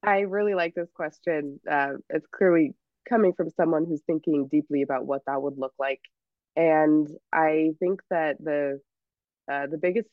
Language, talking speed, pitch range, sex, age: English, 165 wpm, 140-155 Hz, female, 20-39